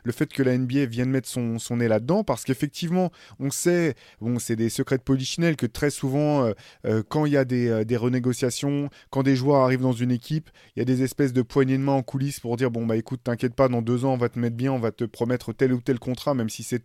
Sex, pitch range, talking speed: male, 115-140 Hz, 275 wpm